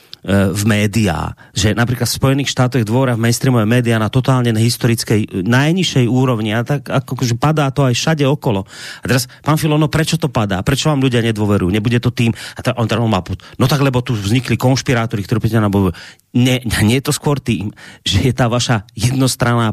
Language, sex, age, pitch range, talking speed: Slovak, male, 30-49, 115-140 Hz, 200 wpm